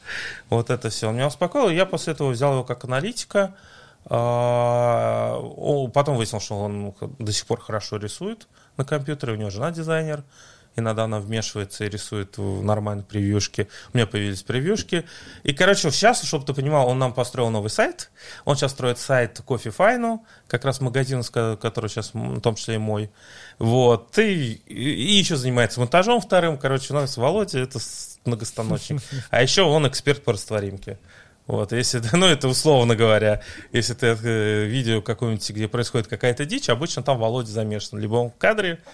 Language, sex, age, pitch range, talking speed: Russian, male, 20-39, 105-140 Hz, 170 wpm